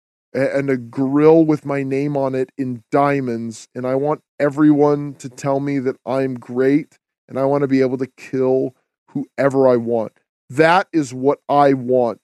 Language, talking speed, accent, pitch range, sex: English, 175 wpm, American, 130-155 Hz, male